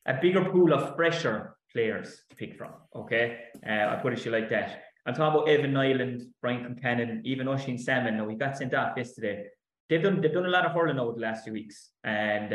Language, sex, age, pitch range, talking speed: English, male, 20-39, 120-150 Hz, 230 wpm